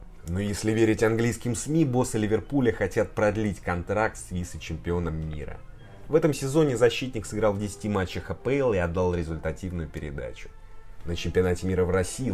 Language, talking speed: Russian, 155 wpm